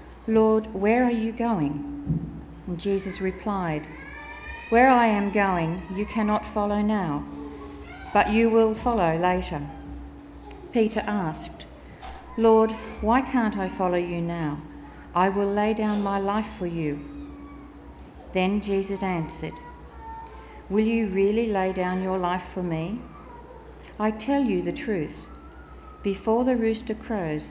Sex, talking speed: female, 130 wpm